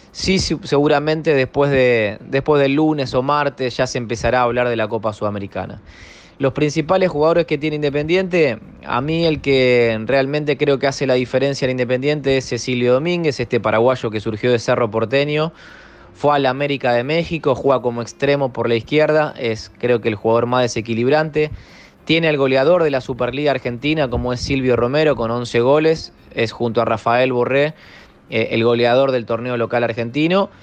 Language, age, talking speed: Portuguese, 20-39, 180 wpm